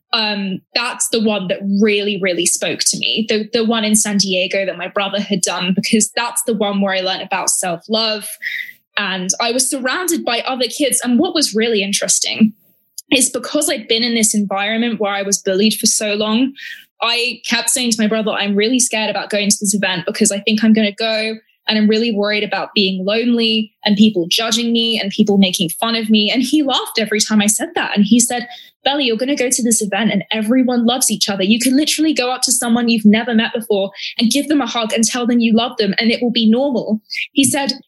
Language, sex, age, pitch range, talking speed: English, female, 10-29, 205-245 Hz, 235 wpm